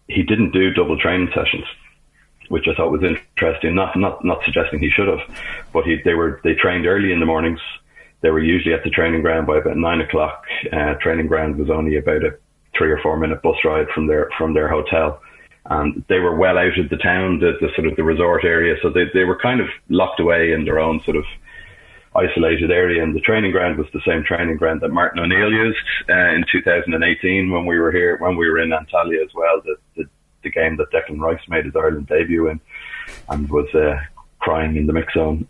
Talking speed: 225 wpm